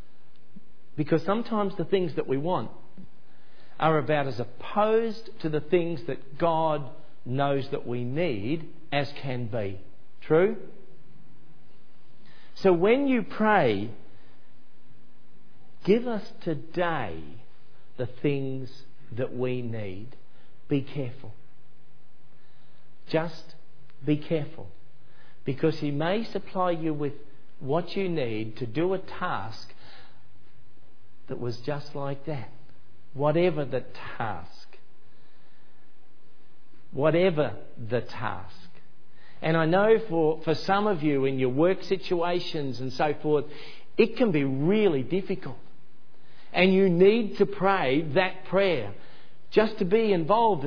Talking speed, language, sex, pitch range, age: 115 wpm, English, male, 135-185 Hz, 50-69